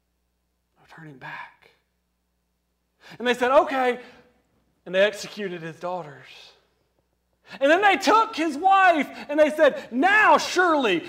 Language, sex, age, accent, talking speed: English, male, 40-59, American, 120 wpm